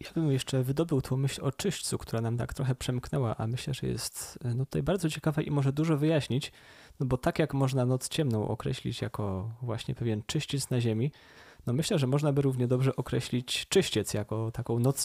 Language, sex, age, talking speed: Polish, male, 20-39, 205 wpm